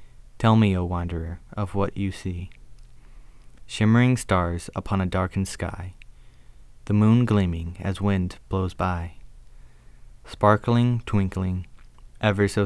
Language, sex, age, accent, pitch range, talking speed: English, male, 20-39, American, 85-105 Hz, 120 wpm